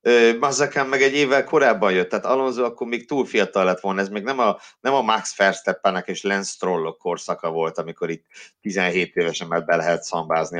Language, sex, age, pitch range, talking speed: Hungarian, male, 50-69, 100-150 Hz, 200 wpm